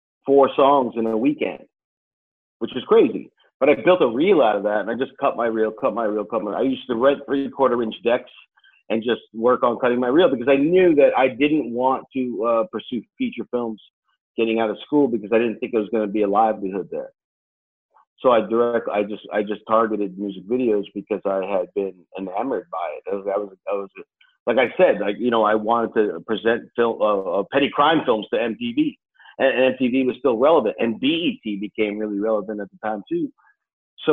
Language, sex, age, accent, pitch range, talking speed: English, male, 40-59, American, 110-135 Hz, 220 wpm